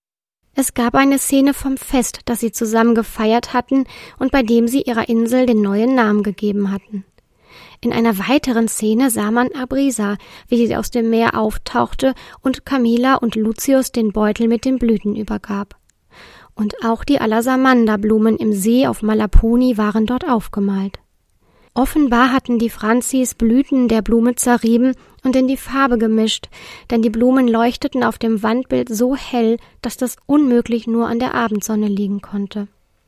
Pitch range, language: 220-255 Hz, German